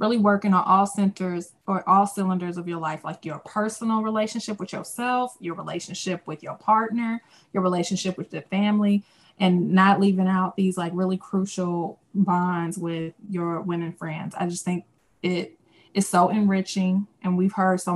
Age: 20-39